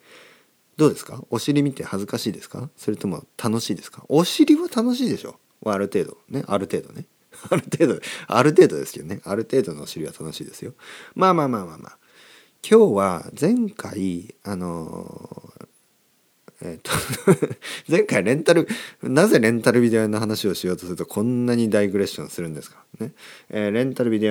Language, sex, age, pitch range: Japanese, male, 40-59, 95-145 Hz